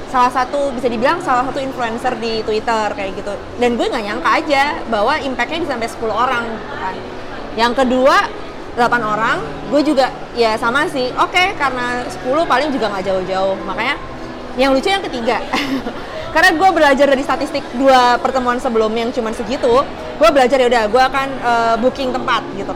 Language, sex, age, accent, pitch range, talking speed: Indonesian, female, 20-39, native, 235-280 Hz, 175 wpm